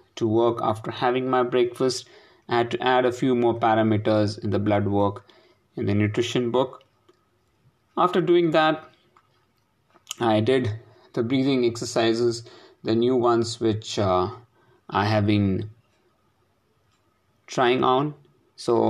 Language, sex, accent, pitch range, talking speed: English, male, Indian, 110-125 Hz, 130 wpm